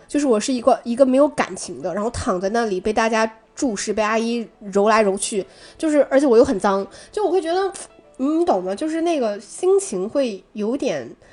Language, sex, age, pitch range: Chinese, female, 20-39, 195-285 Hz